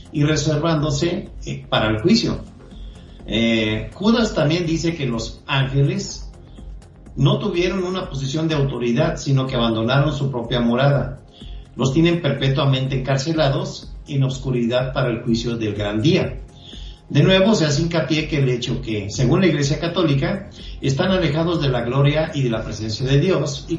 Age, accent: 50-69, Mexican